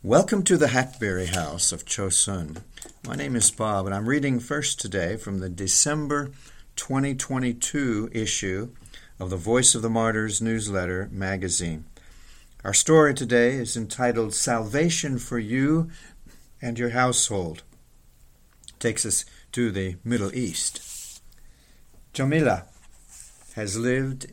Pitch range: 100-135 Hz